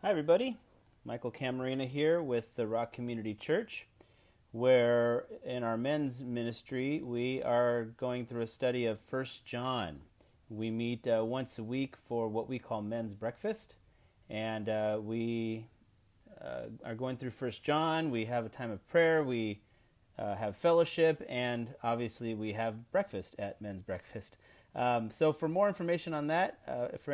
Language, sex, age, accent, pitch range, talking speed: English, male, 30-49, American, 110-140 Hz, 160 wpm